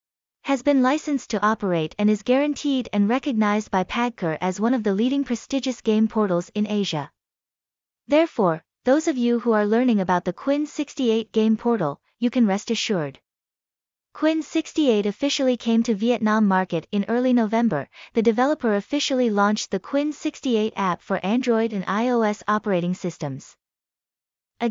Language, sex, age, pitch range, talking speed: Vietnamese, female, 20-39, 200-255 Hz, 155 wpm